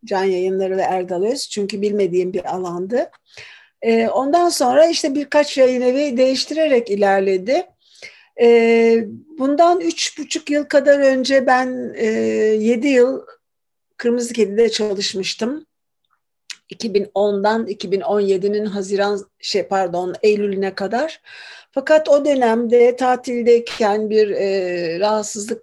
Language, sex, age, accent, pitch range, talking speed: Turkish, female, 60-79, native, 200-265 Hz, 105 wpm